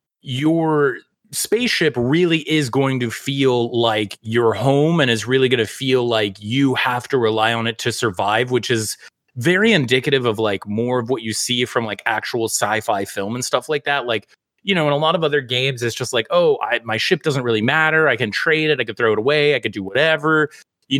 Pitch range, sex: 115-140 Hz, male